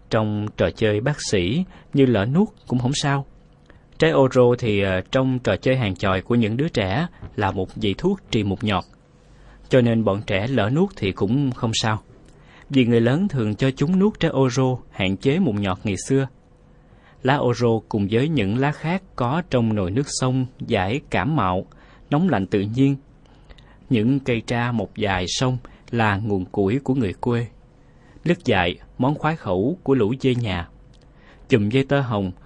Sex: male